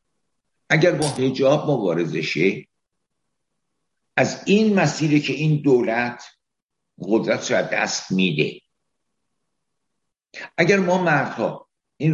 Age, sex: 60-79, male